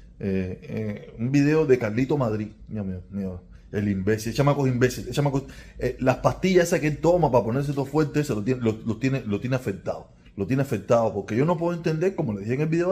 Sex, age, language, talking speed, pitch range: male, 30-49, Spanish, 230 wpm, 105-155 Hz